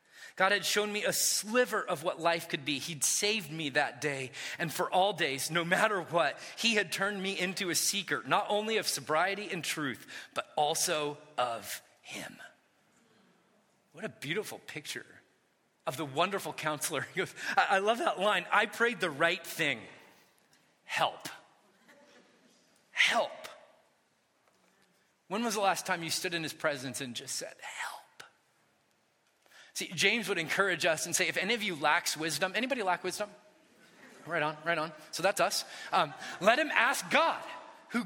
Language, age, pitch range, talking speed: English, 30-49, 165-230 Hz, 160 wpm